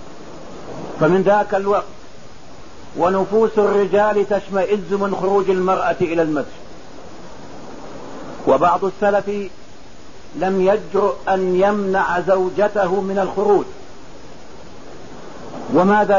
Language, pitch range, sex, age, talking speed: English, 180-205 Hz, male, 50-69, 80 wpm